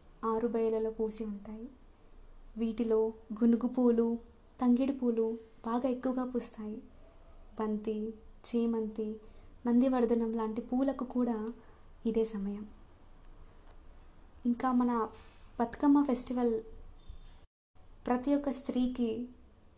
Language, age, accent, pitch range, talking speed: Telugu, 20-39, native, 220-250 Hz, 80 wpm